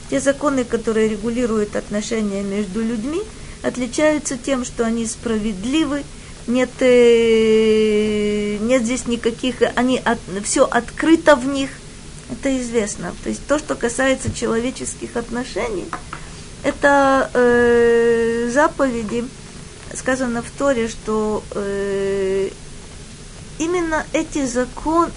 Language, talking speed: Russian, 100 wpm